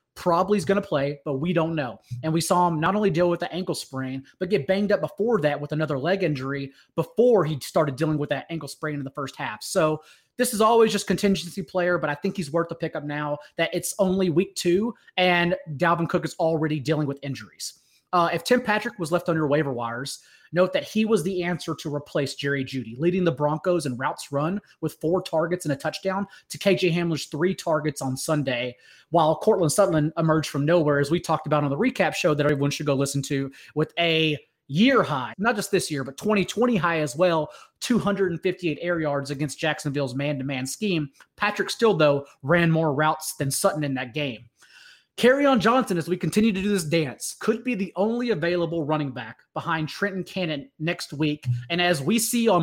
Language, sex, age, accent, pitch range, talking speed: English, male, 30-49, American, 150-190 Hz, 215 wpm